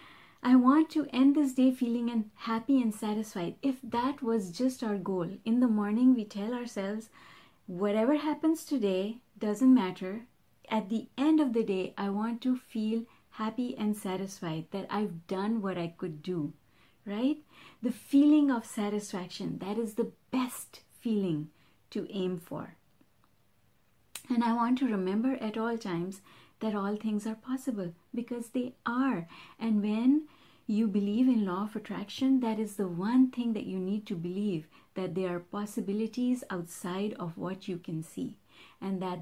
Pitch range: 190-245 Hz